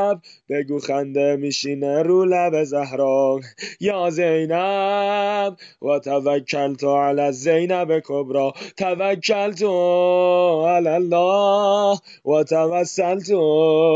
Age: 20-39